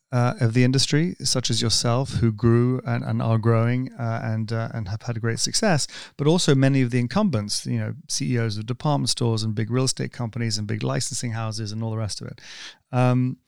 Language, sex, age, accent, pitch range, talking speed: English, male, 30-49, British, 115-135 Hz, 225 wpm